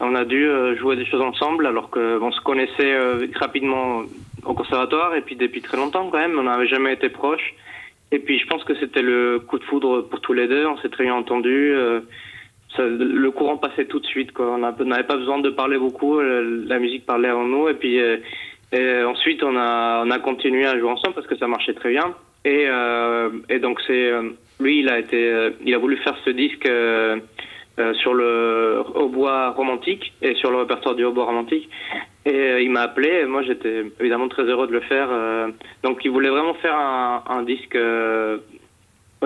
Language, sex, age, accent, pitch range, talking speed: French, male, 20-39, French, 115-135 Hz, 200 wpm